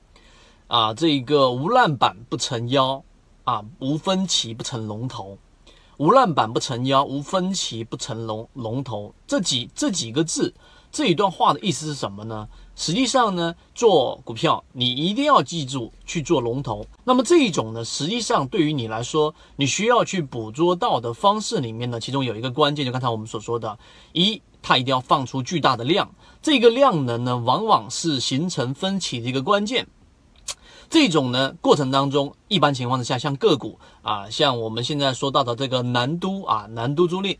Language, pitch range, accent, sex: Chinese, 125-175 Hz, native, male